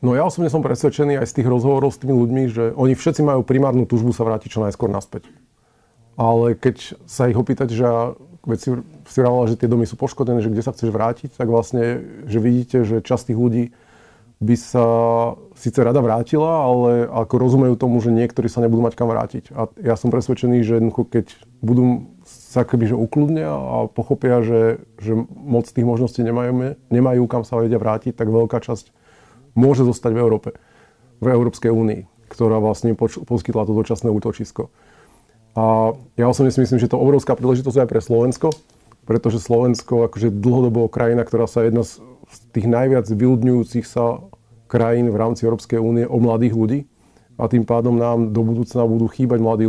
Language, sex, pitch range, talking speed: Slovak, male, 115-125 Hz, 185 wpm